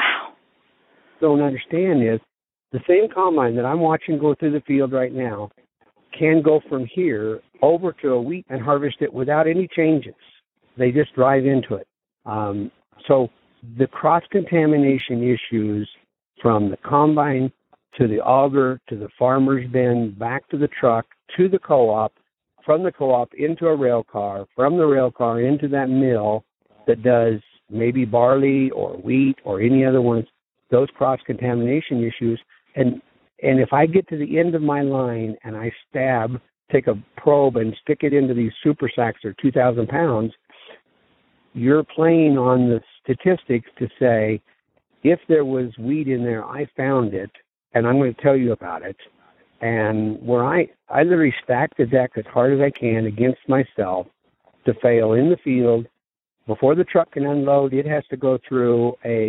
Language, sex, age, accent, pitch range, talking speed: English, male, 60-79, American, 115-145 Hz, 165 wpm